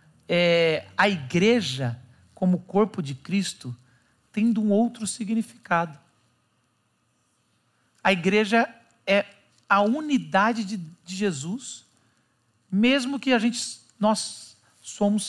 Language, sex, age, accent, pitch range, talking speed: Portuguese, male, 50-69, Brazilian, 165-255 Hz, 85 wpm